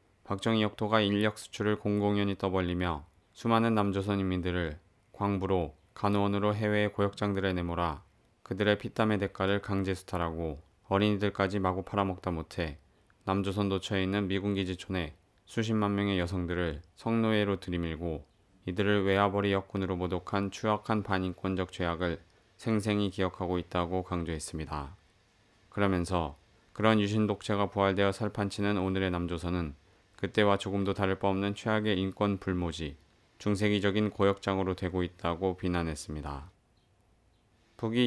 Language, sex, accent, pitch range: Korean, male, native, 90-105 Hz